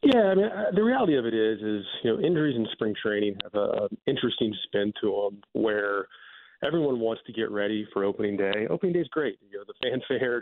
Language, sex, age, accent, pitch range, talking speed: English, male, 30-49, American, 105-125 Hz, 220 wpm